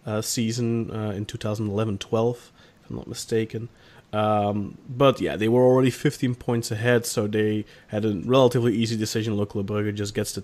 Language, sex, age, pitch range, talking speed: English, male, 30-49, 110-135 Hz, 185 wpm